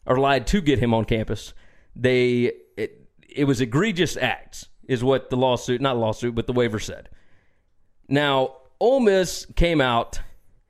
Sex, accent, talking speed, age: male, American, 155 wpm, 30-49